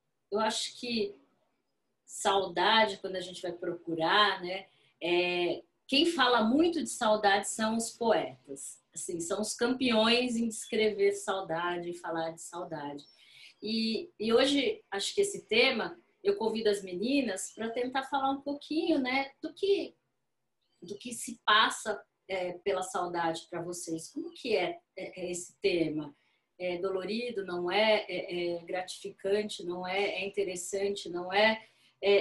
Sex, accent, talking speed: female, Brazilian, 145 wpm